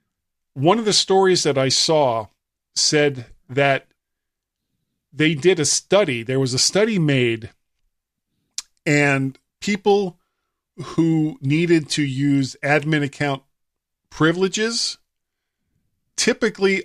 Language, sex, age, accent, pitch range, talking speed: English, male, 40-59, American, 130-175 Hz, 100 wpm